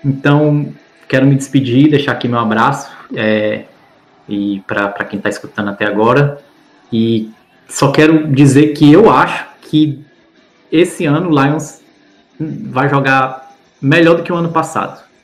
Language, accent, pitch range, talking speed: Portuguese, Brazilian, 115-150 Hz, 140 wpm